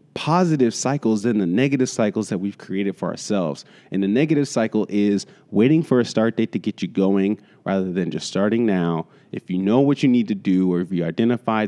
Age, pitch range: 30-49, 110-165 Hz